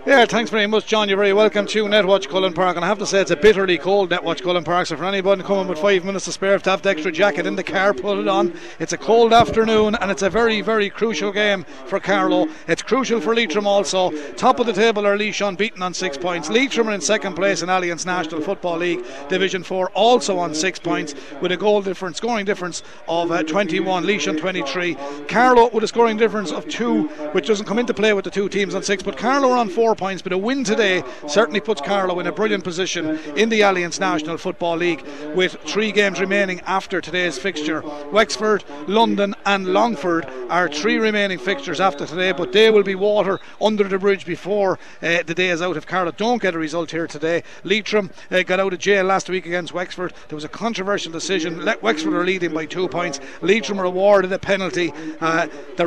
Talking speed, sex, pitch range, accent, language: 220 wpm, male, 175-210 Hz, Irish, English